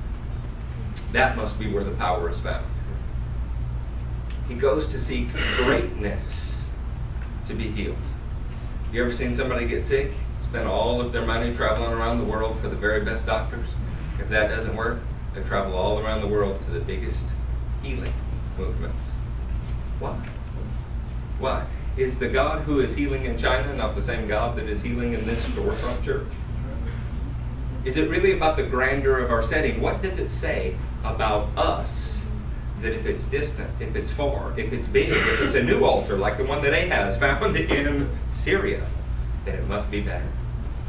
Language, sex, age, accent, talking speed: English, male, 40-59, American, 170 wpm